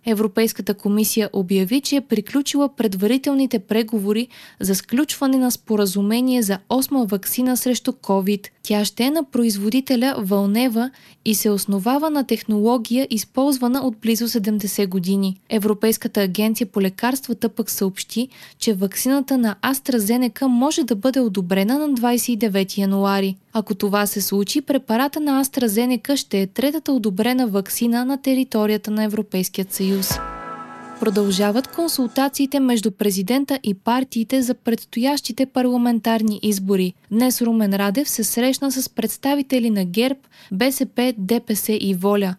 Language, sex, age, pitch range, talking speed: Bulgarian, female, 20-39, 205-255 Hz, 125 wpm